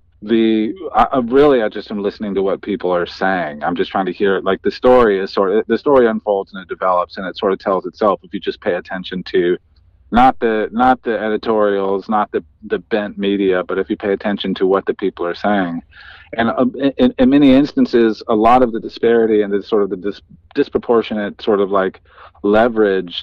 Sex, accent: male, American